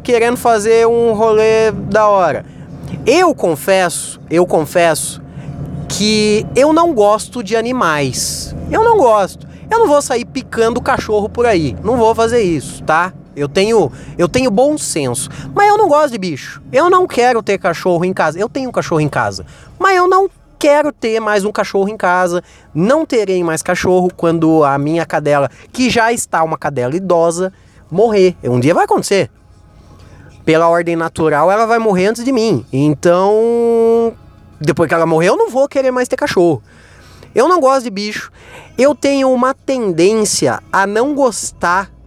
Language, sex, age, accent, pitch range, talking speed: Portuguese, male, 20-39, Brazilian, 160-235 Hz, 170 wpm